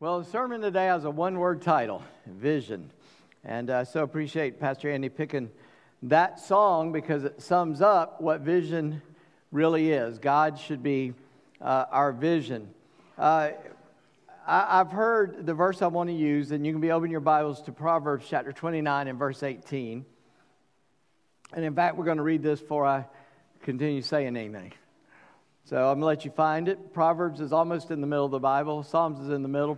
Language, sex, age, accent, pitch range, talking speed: English, male, 50-69, American, 135-160 Hz, 185 wpm